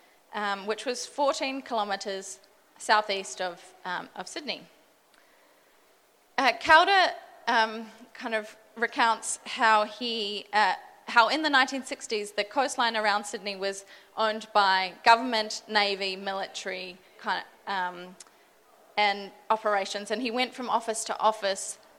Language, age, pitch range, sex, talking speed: English, 20-39, 200-235 Hz, female, 125 wpm